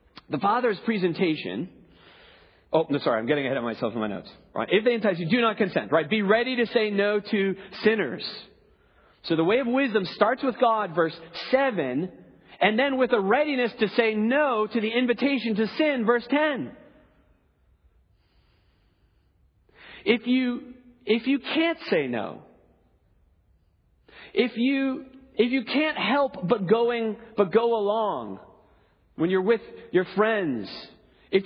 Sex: male